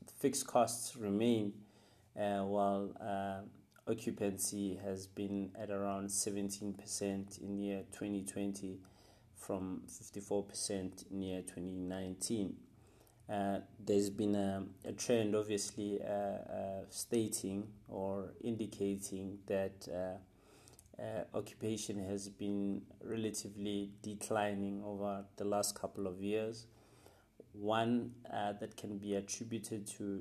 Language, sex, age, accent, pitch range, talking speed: English, male, 30-49, South African, 100-105 Hz, 105 wpm